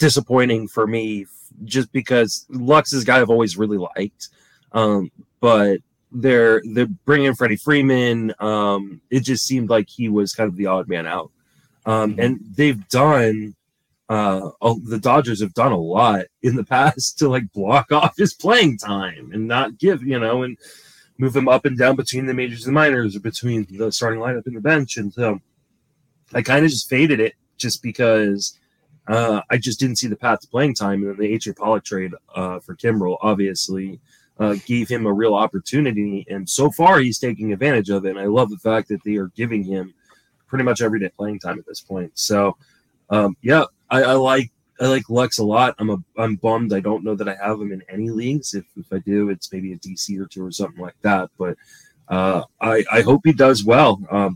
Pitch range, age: 100-130 Hz, 20-39